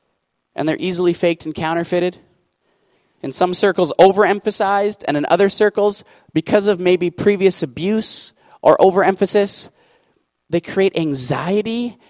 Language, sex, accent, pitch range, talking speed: English, male, American, 160-210 Hz, 120 wpm